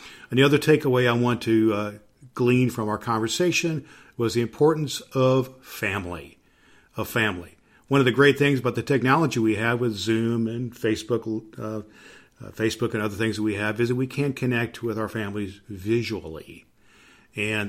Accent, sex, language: American, male, English